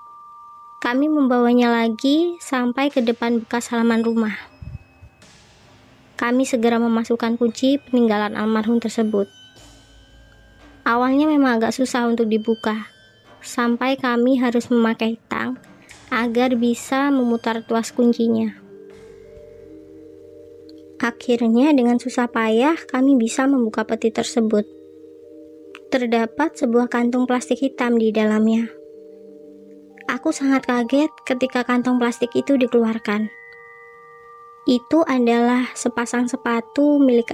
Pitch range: 220-255 Hz